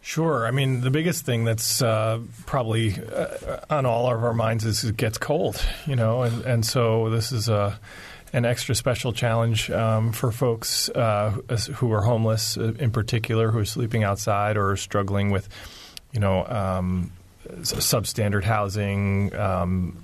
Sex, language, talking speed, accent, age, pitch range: male, English, 160 wpm, American, 30-49, 95-115 Hz